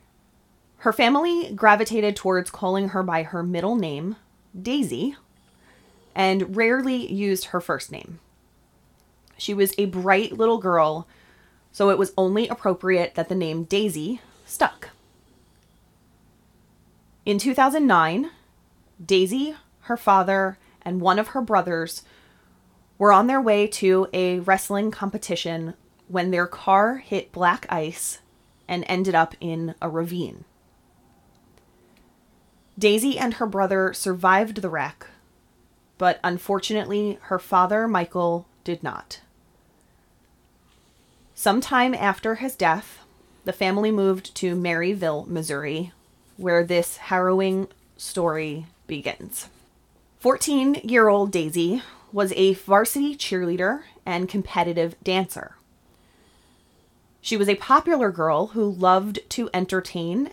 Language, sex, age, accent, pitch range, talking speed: English, female, 30-49, American, 170-210 Hz, 110 wpm